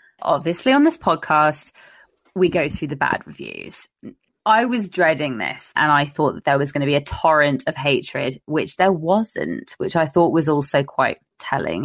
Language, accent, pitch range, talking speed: English, British, 145-200 Hz, 185 wpm